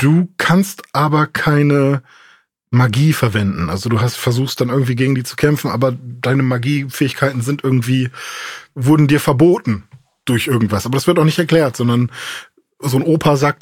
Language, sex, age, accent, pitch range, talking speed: German, male, 20-39, German, 120-150 Hz, 165 wpm